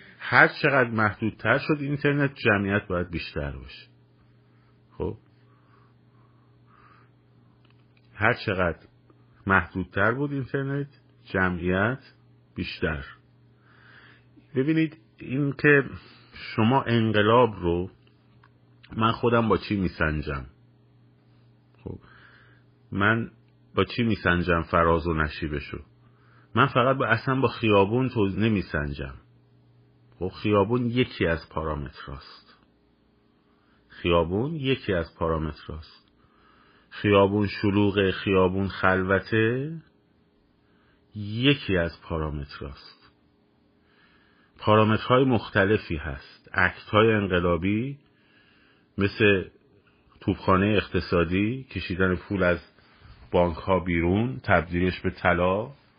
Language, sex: Persian, male